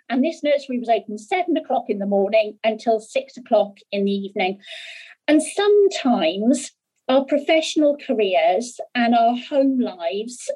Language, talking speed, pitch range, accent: English, 140 wpm, 210-290 Hz, British